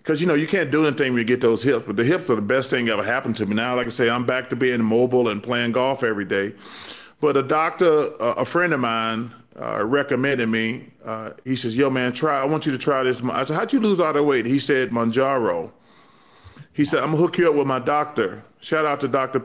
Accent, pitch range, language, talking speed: American, 130-170 Hz, English, 265 wpm